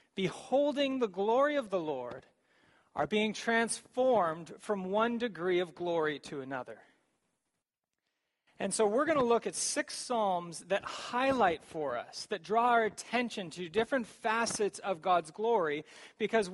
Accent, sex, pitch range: American, male, 175-235 Hz